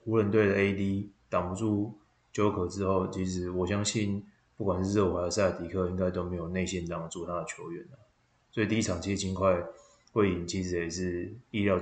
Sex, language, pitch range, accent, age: male, Chinese, 90-110 Hz, native, 20-39